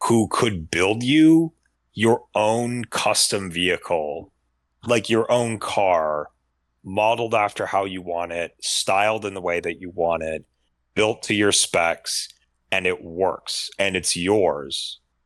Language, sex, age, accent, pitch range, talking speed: English, male, 30-49, American, 80-100 Hz, 140 wpm